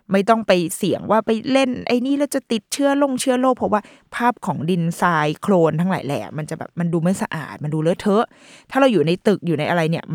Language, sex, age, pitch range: Thai, female, 20-39, 170-235 Hz